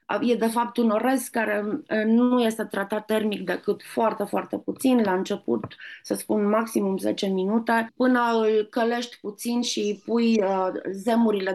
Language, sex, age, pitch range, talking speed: Romanian, female, 20-39, 190-235 Hz, 155 wpm